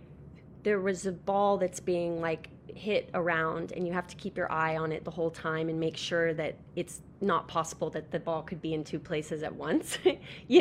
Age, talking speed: 20-39, 220 wpm